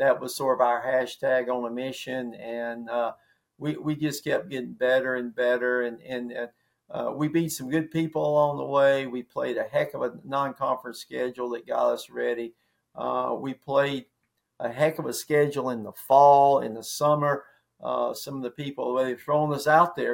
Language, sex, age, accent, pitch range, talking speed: English, male, 50-69, American, 125-145 Hz, 200 wpm